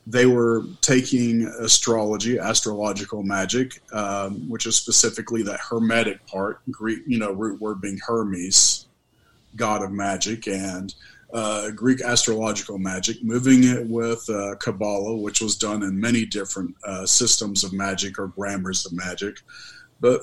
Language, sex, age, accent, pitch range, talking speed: English, male, 40-59, American, 100-120 Hz, 140 wpm